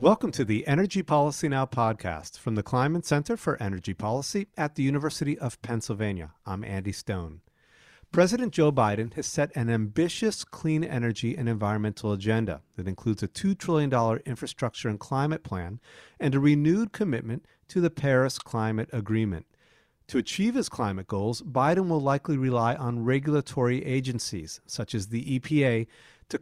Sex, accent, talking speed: male, American, 155 wpm